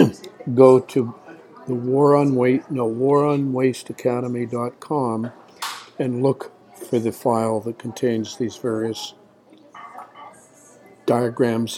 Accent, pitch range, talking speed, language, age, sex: American, 115-135 Hz, 105 wpm, English, 60-79, male